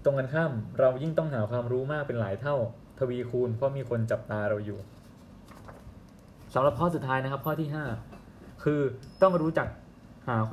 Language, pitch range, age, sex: Thai, 115-140 Hz, 20-39, male